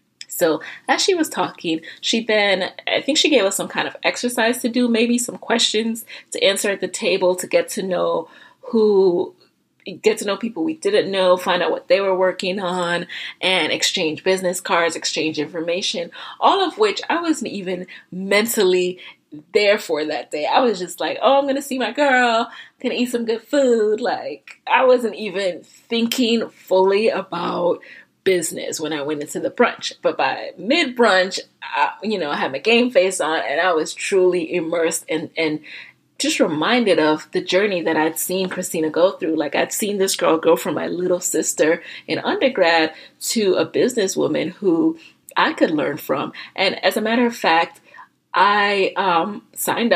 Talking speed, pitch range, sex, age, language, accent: 180 wpm, 175-240 Hz, female, 20-39, English, American